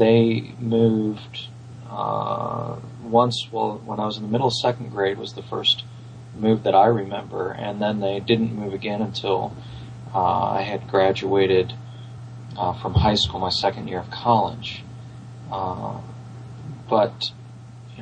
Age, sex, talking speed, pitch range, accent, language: 30-49, male, 145 wpm, 100-120 Hz, American, English